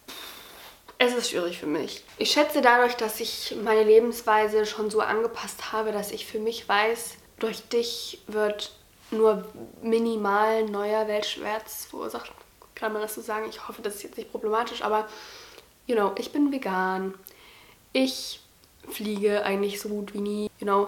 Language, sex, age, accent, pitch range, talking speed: German, female, 10-29, German, 205-235 Hz, 160 wpm